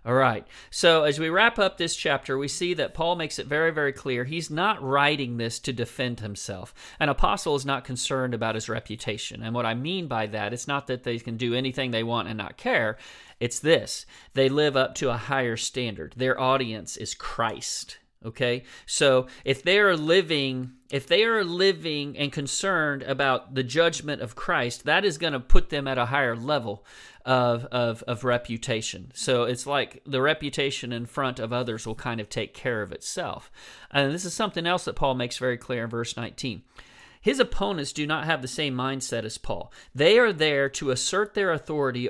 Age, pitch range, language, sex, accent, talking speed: 40-59, 120-155 Hz, English, male, American, 200 wpm